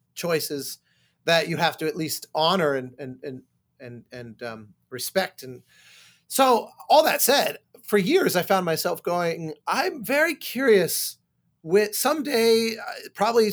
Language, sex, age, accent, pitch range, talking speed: English, male, 30-49, American, 150-205 Hz, 140 wpm